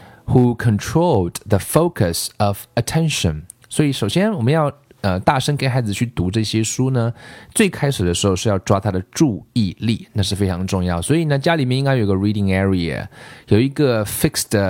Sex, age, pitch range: male, 20-39, 95-130 Hz